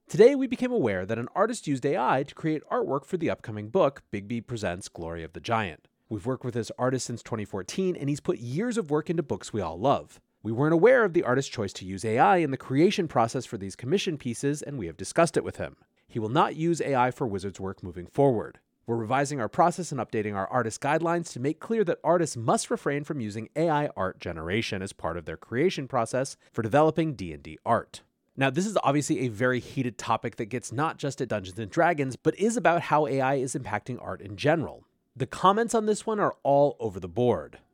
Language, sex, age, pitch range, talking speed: English, male, 30-49, 115-160 Hz, 225 wpm